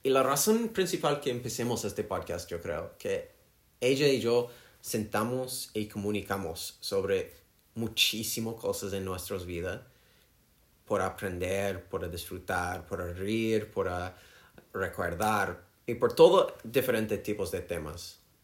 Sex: male